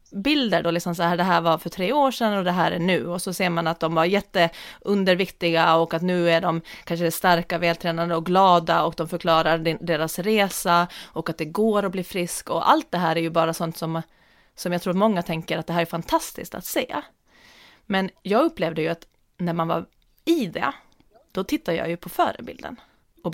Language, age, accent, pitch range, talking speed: Swedish, 30-49, native, 170-215 Hz, 220 wpm